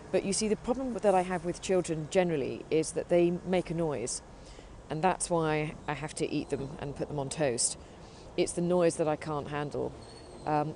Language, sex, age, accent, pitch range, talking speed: English, female, 40-59, British, 155-190 Hz, 210 wpm